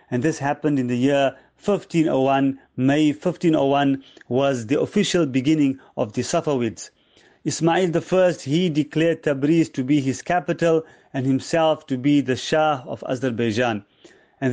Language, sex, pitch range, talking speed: English, male, 140-170 Hz, 140 wpm